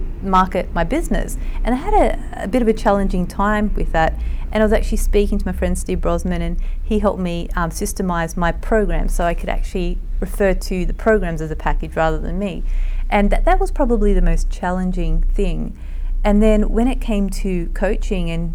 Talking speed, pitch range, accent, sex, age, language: 205 wpm, 165-200 Hz, Australian, female, 40-59, English